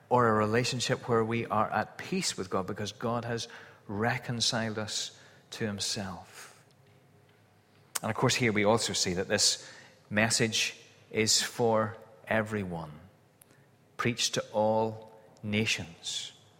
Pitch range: 105-135 Hz